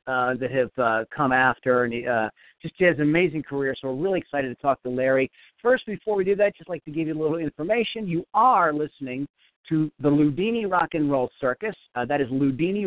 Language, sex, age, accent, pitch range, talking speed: English, male, 50-69, American, 130-170 Hz, 240 wpm